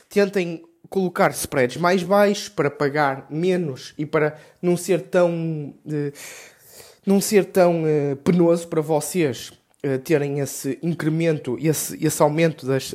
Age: 20-39